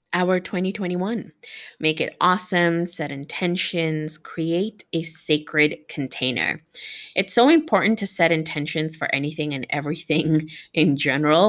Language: English